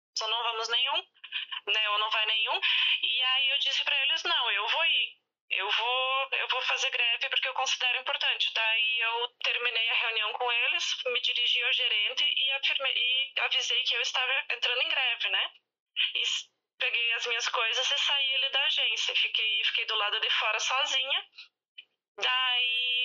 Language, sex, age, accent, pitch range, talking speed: Portuguese, female, 20-39, Brazilian, 215-270 Hz, 180 wpm